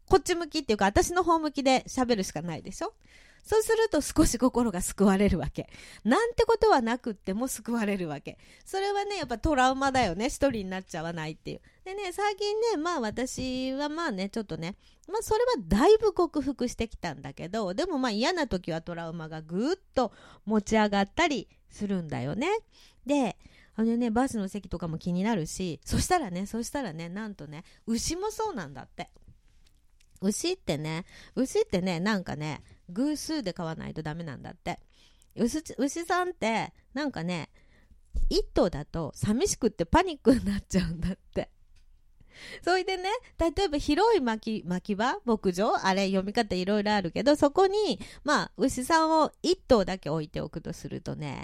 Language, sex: Japanese, female